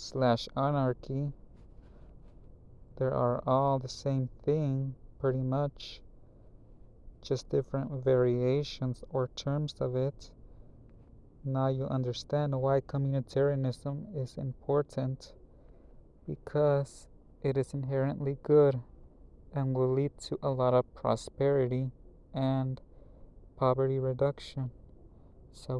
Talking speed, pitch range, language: 95 wpm, 110-135 Hz, English